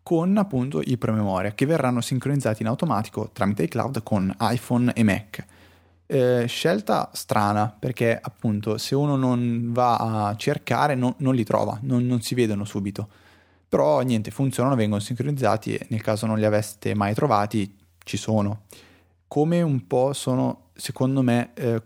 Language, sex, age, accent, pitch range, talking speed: Italian, male, 20-39, native, 105-130 Hz, 160 wpm